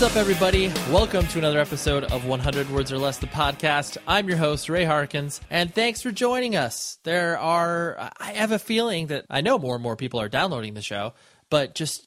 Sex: male